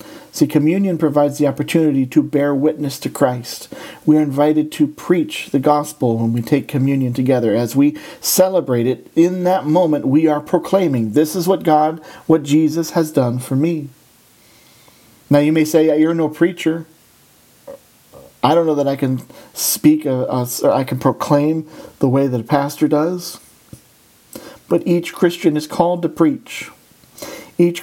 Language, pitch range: English, 130-165 Hz